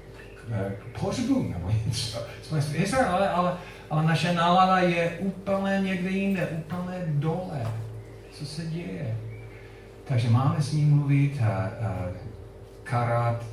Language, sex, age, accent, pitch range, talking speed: Czech, male, 40-59, native, 100-120 Hz, 110 wpm